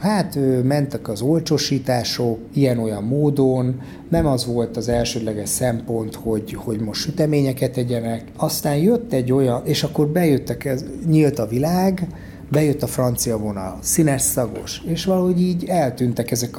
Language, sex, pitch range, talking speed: Hungarian, male, 115-155 Hz, 135 wpm